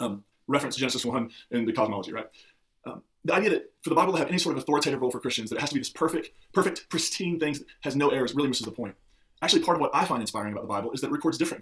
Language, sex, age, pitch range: English, male, 20-39, 125-165 Hz